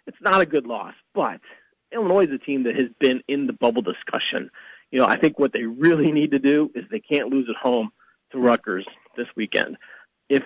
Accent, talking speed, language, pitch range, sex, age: American, 220 wpm, English, 120-150 Hz, male, 40-59